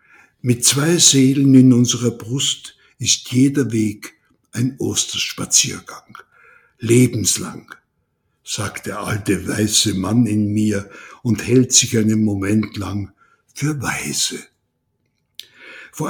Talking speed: 105 wpm